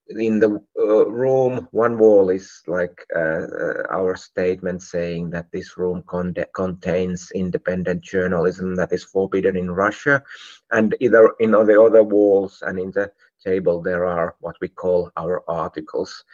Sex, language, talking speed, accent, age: male, Finnish, 155 wpm, native, 30-49